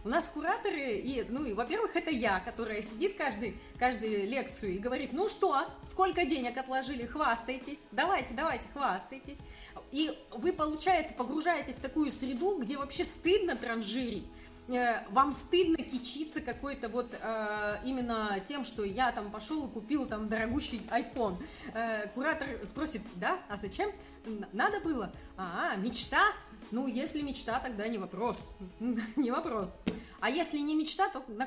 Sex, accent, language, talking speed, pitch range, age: female, native, Russian, 145 wpm, 225-300 Hz, 30-49